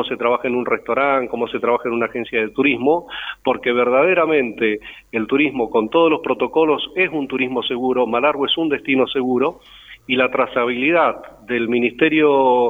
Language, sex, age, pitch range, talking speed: Spanish, male, 40-59, 120-150 Hz, 165 wpm